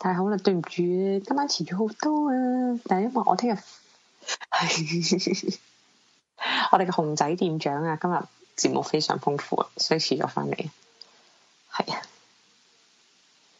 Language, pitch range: Chinese, 145-205 Hz